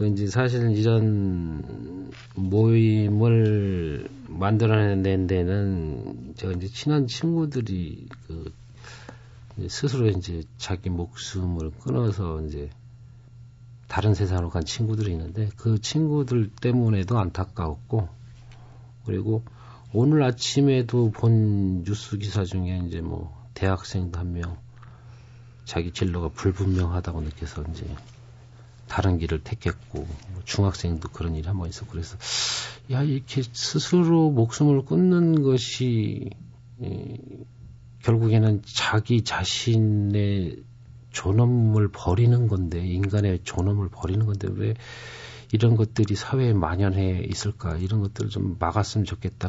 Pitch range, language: 95-120 Hz, Korean